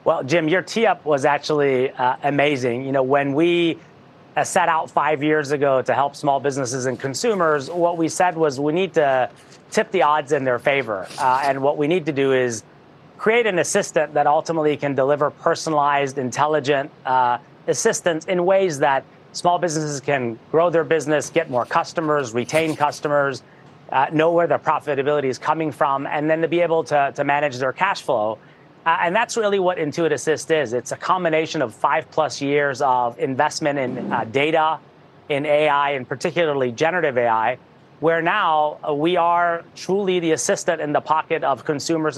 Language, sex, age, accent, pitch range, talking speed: English, male, 30-49, American, 140-165 Hz, 185 wpm